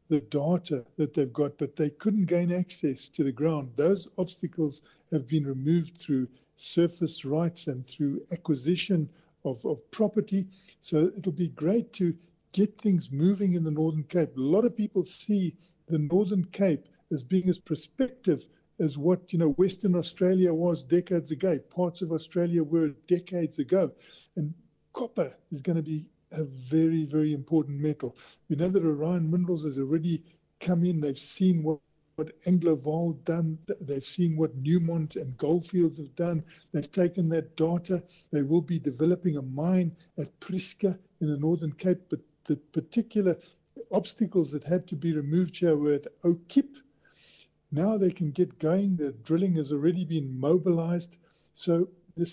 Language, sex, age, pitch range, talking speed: English, male, 60-79, 155-180 Hz, 160 wpm